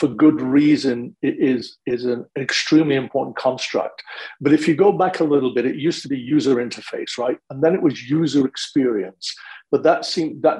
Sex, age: male, 50-69